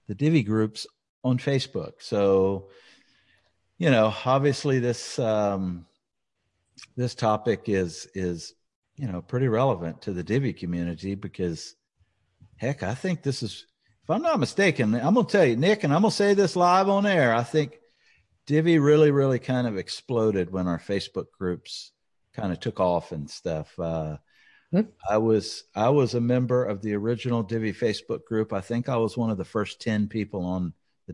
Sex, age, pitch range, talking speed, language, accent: male, 50-69, 95-130 Hz, 170 wpm, English, American